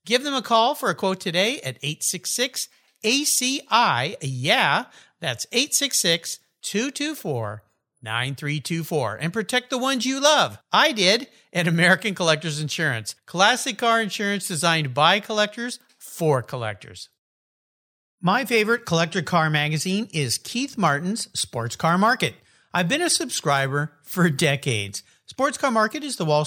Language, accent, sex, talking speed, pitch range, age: English, American, male, 125 wpm, 150-225 Hz, 50-69